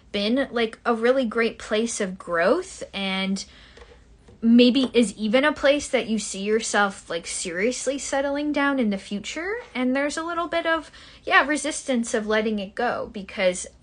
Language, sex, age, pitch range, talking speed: English, female, 10-29, 185-240 Hz, 165 wpm